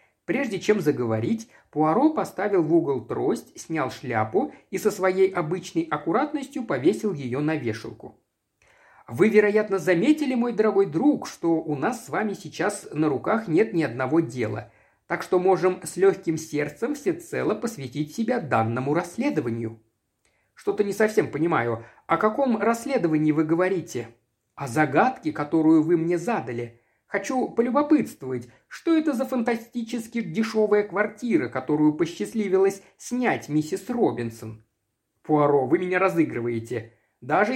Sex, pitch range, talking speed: male, 130-215 Hz, 130 wpm